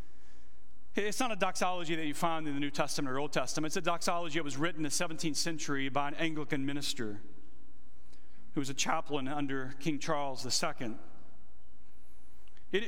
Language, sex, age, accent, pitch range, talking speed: English, male, 40-59, American, 155-220 Hz, 170 wpm